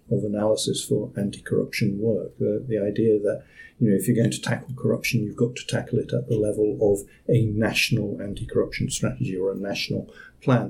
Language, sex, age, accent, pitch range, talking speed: English, male, 50-69, British, 110-130 Hz, 190 wpm